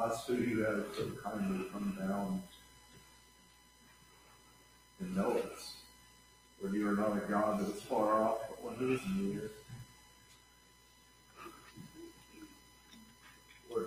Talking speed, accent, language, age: 120 wpm, American, English, 50-69